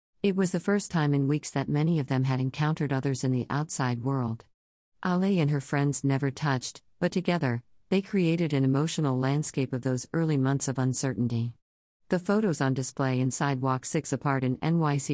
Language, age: English, 50-69